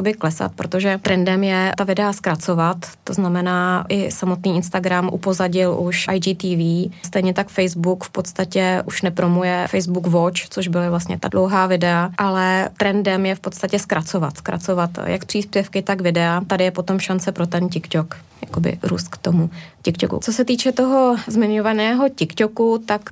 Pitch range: 180-200 Hz